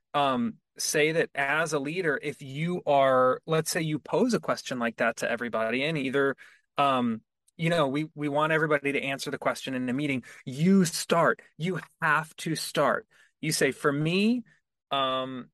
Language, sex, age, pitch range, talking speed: English, male, 20-39, 130-165 Hz, 180 wpm